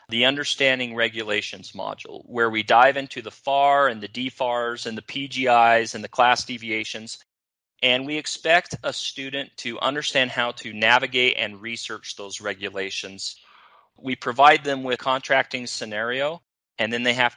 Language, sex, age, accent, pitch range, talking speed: English, male, 30-49, American, 110-130 Hz, 155 wpm